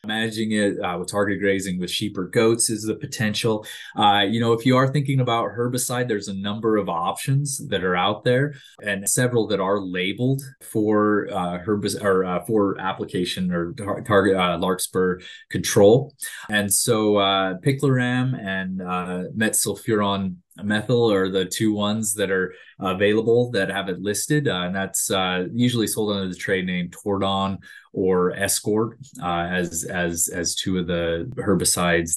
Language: English